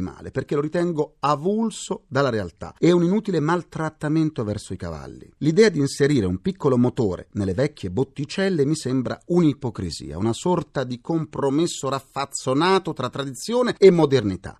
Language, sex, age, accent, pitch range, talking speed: Italian, male, 40-59, native, 105-175 Hz, 145 wpm